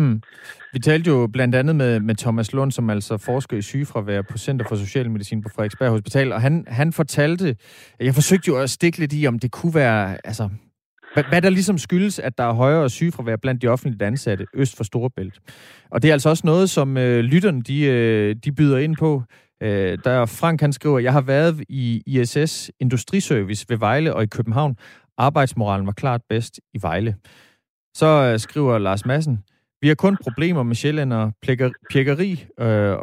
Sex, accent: male, native